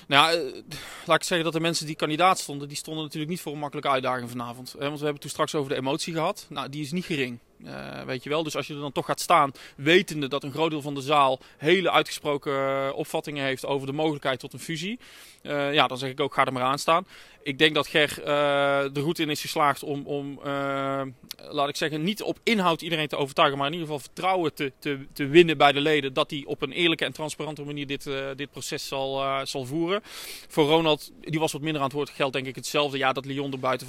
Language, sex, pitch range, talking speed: Dutch, male, 140-155 Hz, 255 wpm